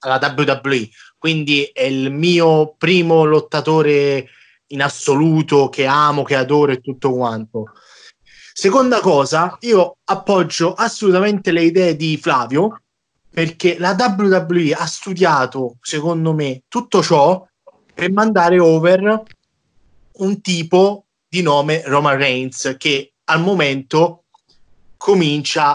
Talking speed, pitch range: 110 wpm, 140-190 Hz